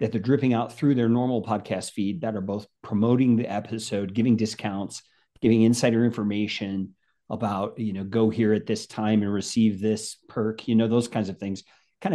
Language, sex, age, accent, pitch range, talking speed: English, male, 40-59, American, 105-120 Hz, 195 wpm